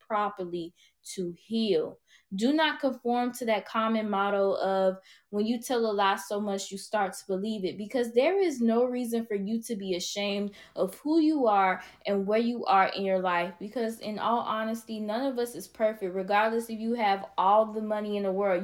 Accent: American